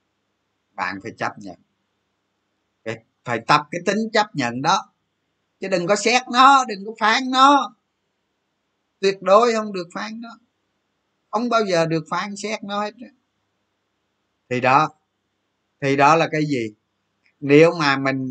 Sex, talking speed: male, 150 wpm